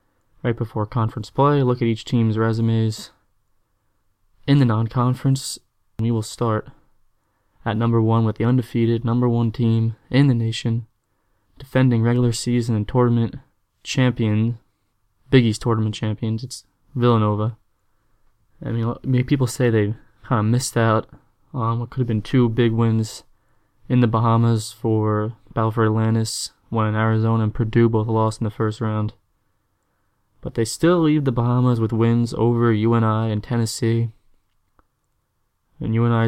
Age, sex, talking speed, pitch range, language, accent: 20-39, male, 145 wpm, 110-120 Hz, English, American